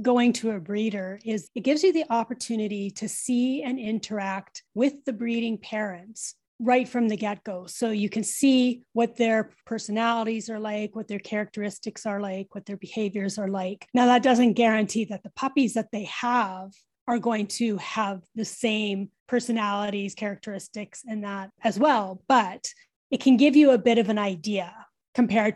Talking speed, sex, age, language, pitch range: 175 wpm, female, 30-49, English, 200-240 Hz